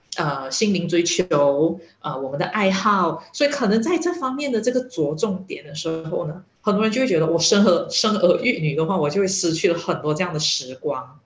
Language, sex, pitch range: Chinese, female, 155-220 Hz